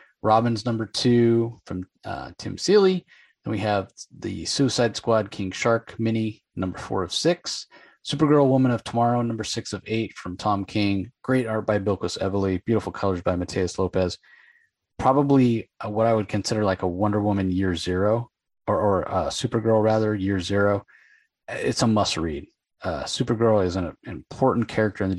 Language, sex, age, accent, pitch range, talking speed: English, male, 30-49, American, 95-115 Hz, 170 wpm